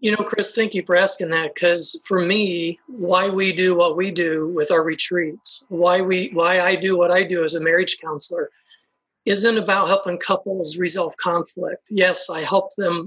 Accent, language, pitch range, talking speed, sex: American, English, 175-205 Hz, 195 wpm, male